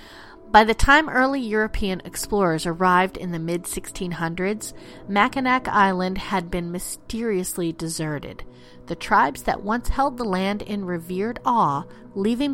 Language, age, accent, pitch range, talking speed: English, 40-59, American, 180-255 Hz, 130 wpm